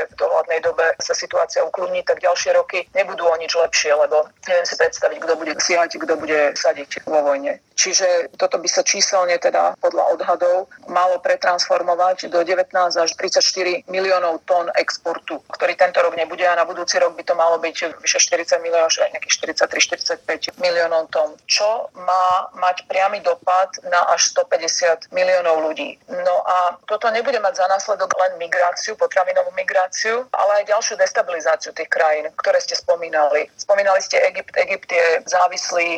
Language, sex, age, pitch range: Slovak, female, 40-59, 170-210 Hz